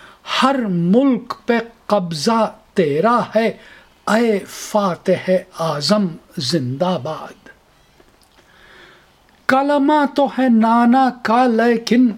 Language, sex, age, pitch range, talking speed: Urdu, male, 50-69, 190-235 Hz, 75 wpm